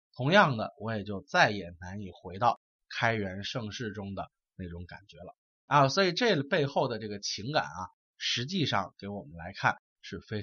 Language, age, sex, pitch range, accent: Chinese, 20-39, male, 100-140 Hz, native